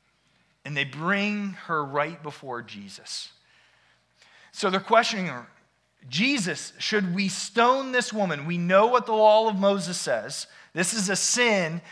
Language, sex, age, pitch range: English, male, 30-49, 110-180 Hz